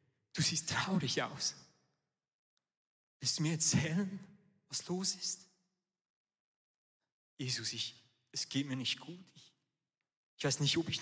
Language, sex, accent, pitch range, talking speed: German, male, German, 130-180 Hz, 130 wpm